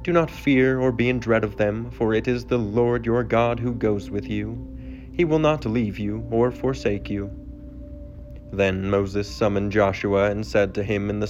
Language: English